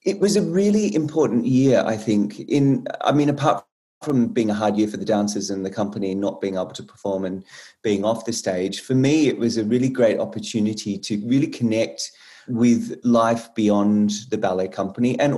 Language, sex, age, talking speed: English, male, 30-49, 205 wpm